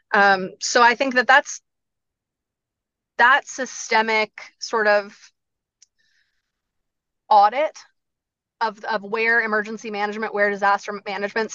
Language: English